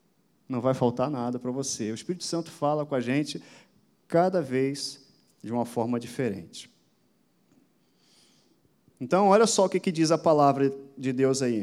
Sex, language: male, Portuguese